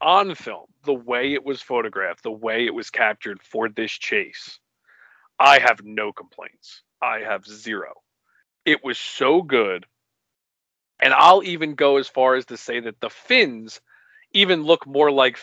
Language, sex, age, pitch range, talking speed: English, male, 40-59, 115-140 Hz, 165 wpm